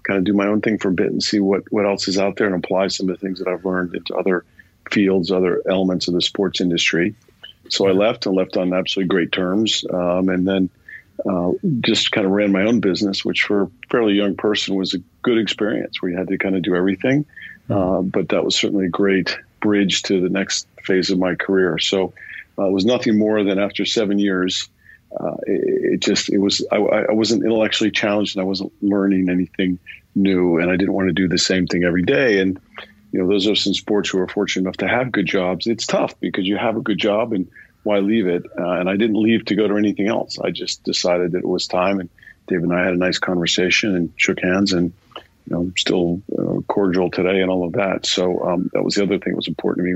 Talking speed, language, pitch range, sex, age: 245 wpm, English, 90-100 Hz, male, 50-69